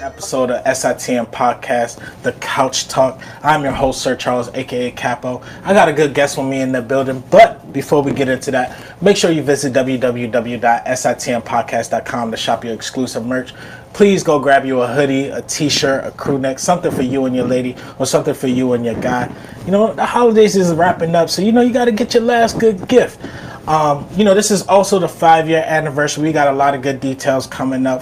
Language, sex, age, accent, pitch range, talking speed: English, male, 20-39, American, 130-150 Hz, 215 wpm